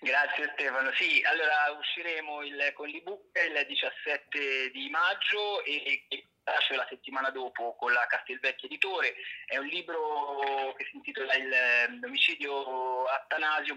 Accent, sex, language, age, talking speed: native, male, Italian, 30-49, 130 wpm